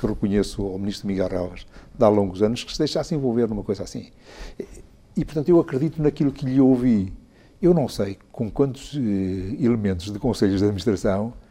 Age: 60-79